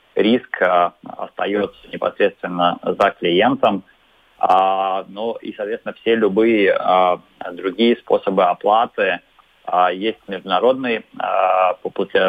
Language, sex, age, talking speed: Russian, male, 30-49, 75 wpm